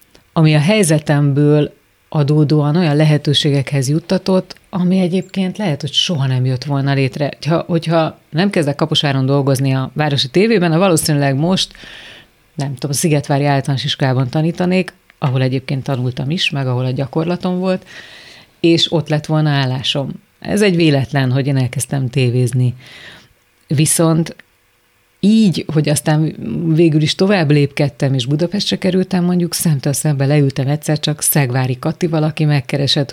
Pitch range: 140-165 Hz